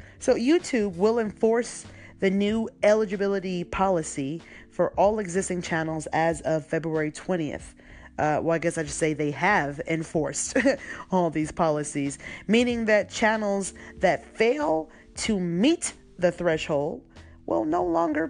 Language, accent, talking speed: English, American, 135 wpm